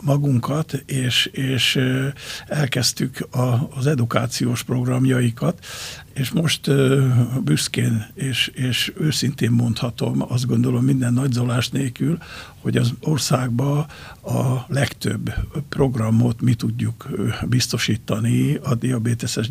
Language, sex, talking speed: Hungarian, male, 90 wpm